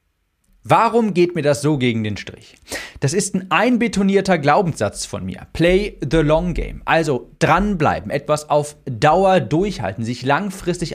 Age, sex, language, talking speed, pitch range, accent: 40-59, male, German, 150 wpm, 125-180 Hz, German